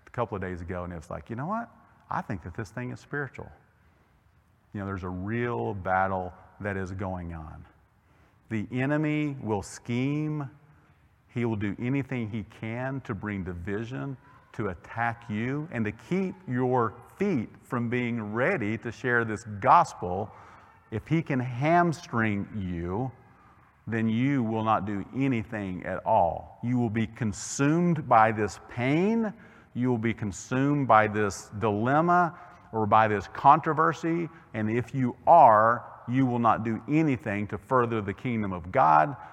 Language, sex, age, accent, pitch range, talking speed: English, male, 40-59, American, 105-135 Hz, 155 wpm